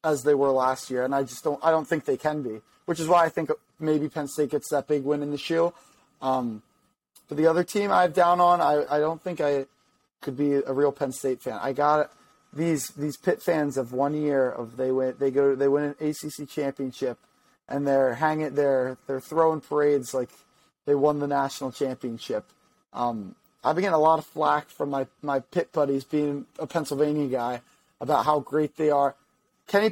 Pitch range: 135-160 Hz